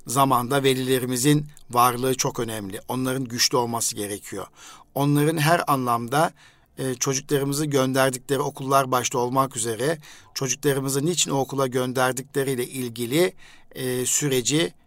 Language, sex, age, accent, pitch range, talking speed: Turkish, male, 60-79, native, 120-150 Hz, 95 wpm